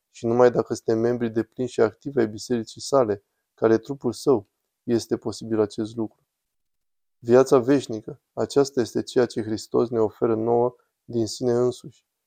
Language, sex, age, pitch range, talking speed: Romanian, male, 20-39, 110-125 Hz, 160 wpm